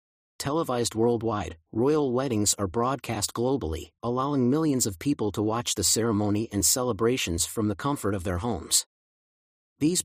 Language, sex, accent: English, male, American